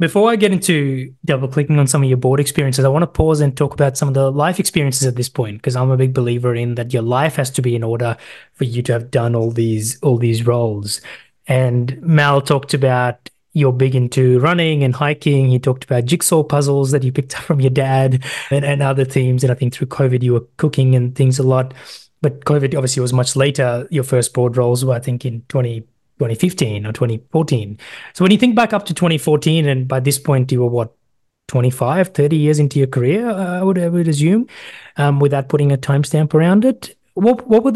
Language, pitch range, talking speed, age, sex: English, 130-160 Hz, 225 wpm, 20-39, male